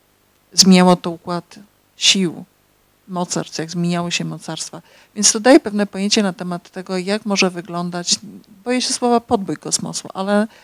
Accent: native